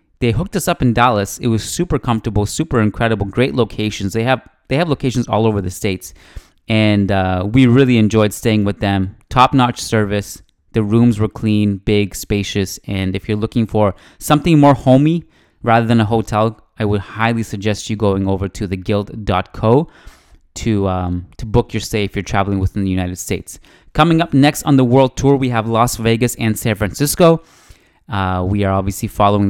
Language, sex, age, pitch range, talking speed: English, male, 20-39, 100-125 Hz, 185 wpm